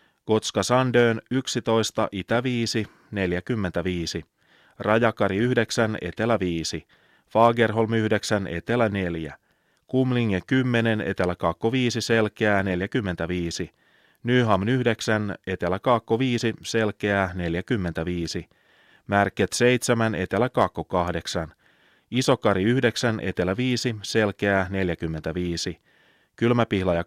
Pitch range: 90-115 Hz